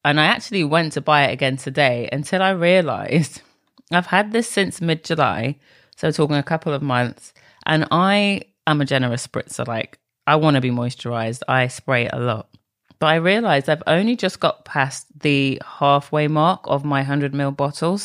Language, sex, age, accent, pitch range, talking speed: English, female, 30-49, British, 135-165 Hz, 185 wpm